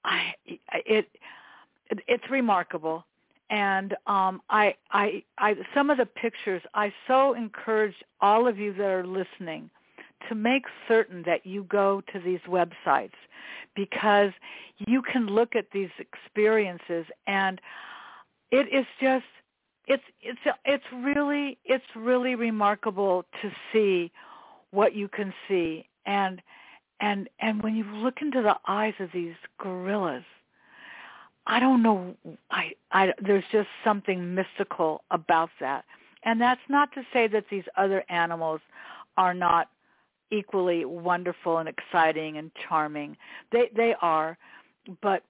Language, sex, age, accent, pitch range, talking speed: English, female, 60-79, American, 185-230 Hz, 130 wpm